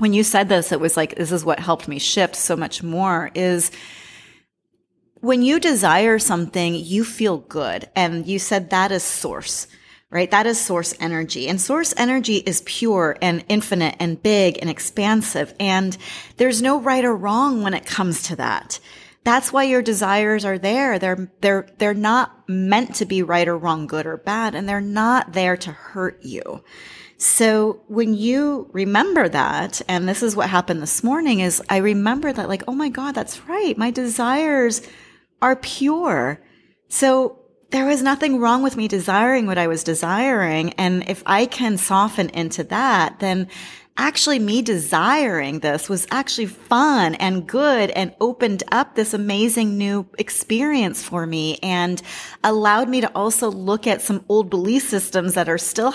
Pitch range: 180-240 Hz